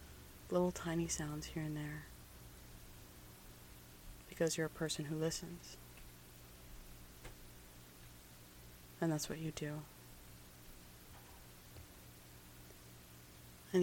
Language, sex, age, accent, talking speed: English, female, 30-49, American, 80 wpm